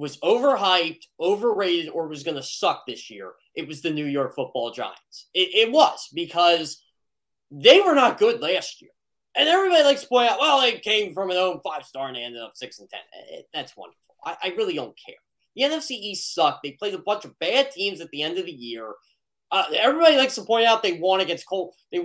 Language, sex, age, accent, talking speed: English, male, 20-39, American, 220 wpm